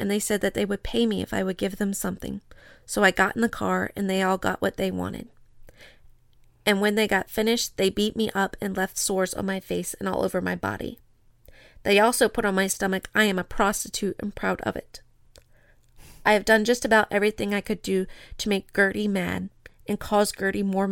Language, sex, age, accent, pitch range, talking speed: English, female, 30-49, American, 125-205 Hz, 225 wpm